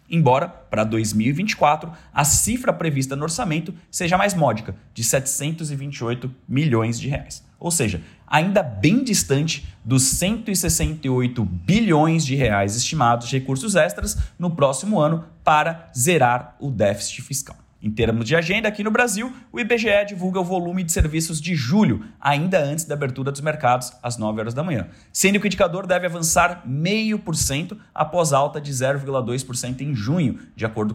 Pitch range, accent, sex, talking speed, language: 125-175 Hz, Brazilian, male, 155 wpm, Portuguese